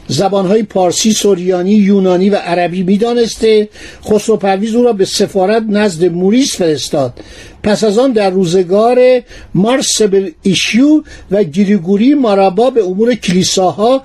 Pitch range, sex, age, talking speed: 185-235 Hz, male, 60-79, 130 wpm